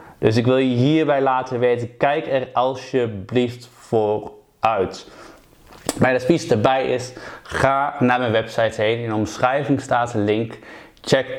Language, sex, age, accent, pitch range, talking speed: Dutch, male, 20-39, Dutch, 115-140 Hz, 150 wpm